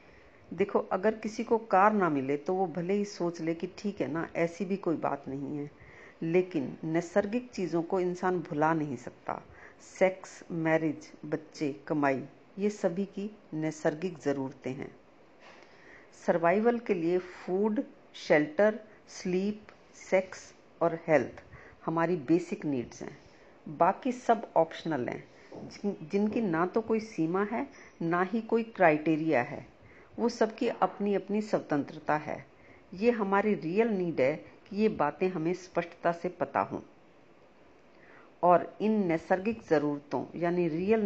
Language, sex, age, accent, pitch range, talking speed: Hindi, female, 50-69, native, 160-205 Hz, 140 wpm